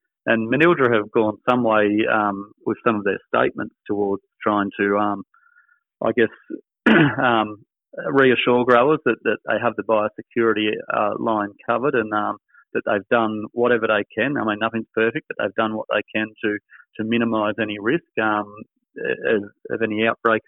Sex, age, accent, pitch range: male, 30-49, Australian, 105-115 Hz